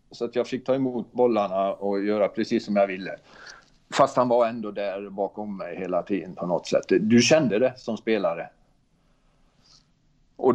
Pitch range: 100-120 Hz